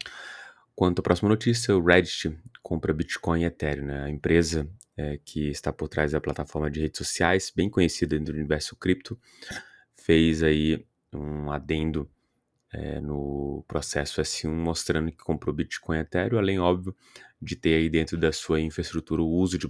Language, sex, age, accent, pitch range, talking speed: Portuguese, male, 20-39, Brazilian, 75-90 Hz, 160 wpm